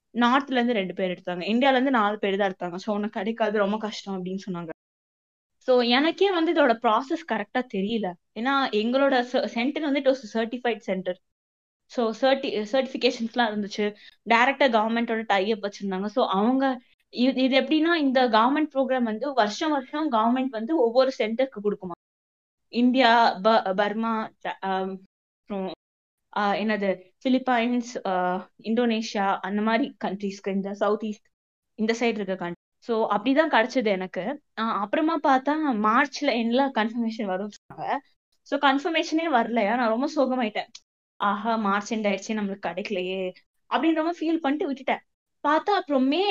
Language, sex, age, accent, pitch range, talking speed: Tamil, female, 20-39, native, 205-270 Hz, 125 wpm